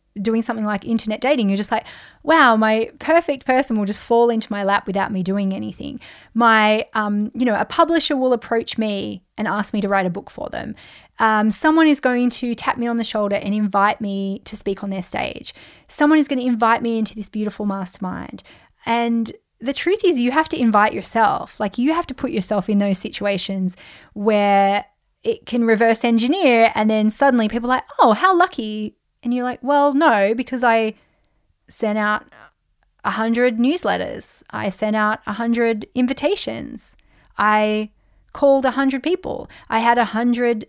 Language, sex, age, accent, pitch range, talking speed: English, female, 20-39, Australian, 210-270 Hz, 185 wpm